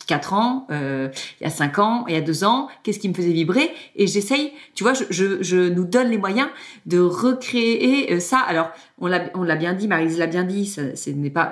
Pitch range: 165-225 Hz